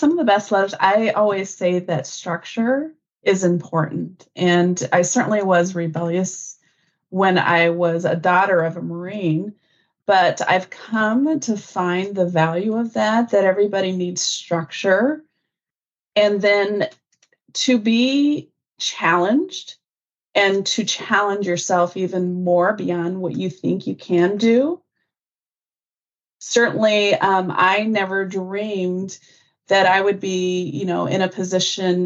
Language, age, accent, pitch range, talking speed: English, 30-49, American, 180-205 Hz, 130 wpm